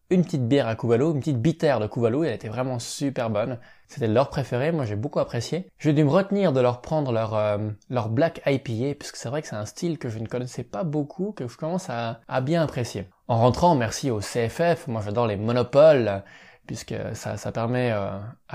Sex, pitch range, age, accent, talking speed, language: male, 110-150 Hz, 20-39, French, 220 wpm, French